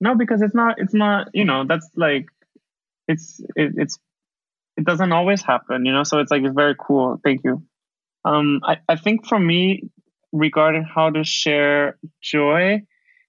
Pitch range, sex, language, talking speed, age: 150-180 Hz, male, English, 170 wpm, 20-39